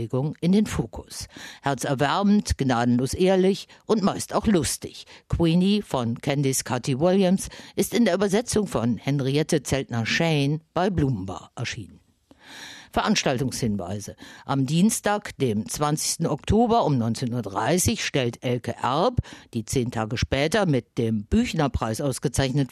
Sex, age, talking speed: female, 50-69, 120 wpm